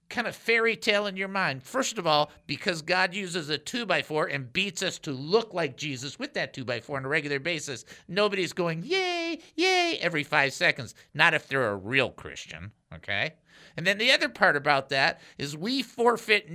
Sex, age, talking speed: male, 50-69, 205 wpm